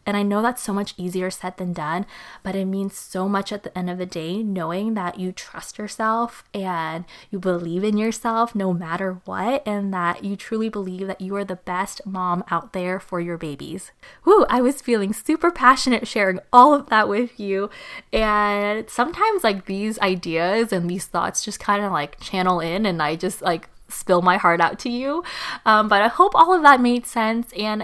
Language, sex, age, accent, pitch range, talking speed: English, female, 20-39, American, 185-230 Hz, 205 wpm